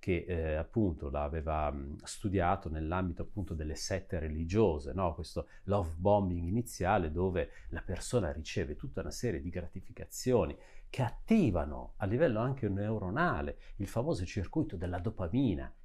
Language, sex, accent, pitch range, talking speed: Italian, male, native, 85-120 Hz, 135 wpm